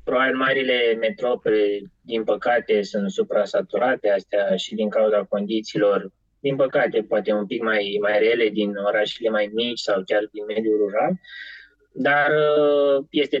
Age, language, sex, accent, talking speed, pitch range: 20-39, Romanian, male, native, 145 wpm, 105-150 Hz